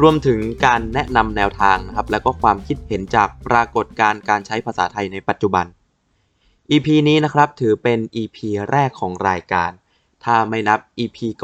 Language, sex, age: Thai, male, 20-39